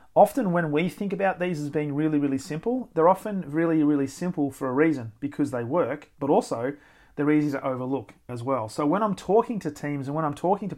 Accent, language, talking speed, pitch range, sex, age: Australian, English, 230 wpm, 140-175 Hz, male, 40-59